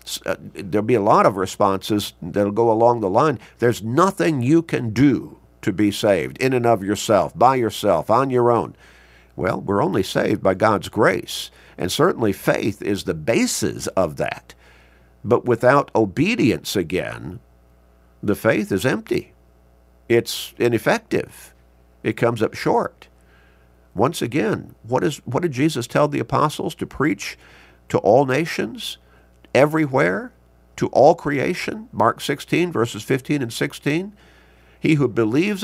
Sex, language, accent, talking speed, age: male, English, American, 145 wpm, 50-69